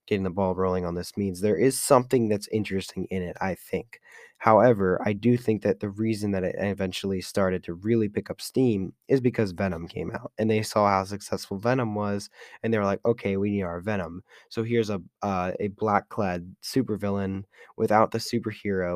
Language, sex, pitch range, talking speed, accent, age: English, male, 95-115 Hz, 200 wpm, American, 20-39